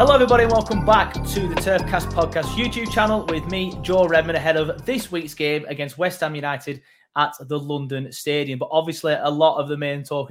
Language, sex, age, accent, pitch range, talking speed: English, male, 20-39, British, 135-165 Hz, 210 wpm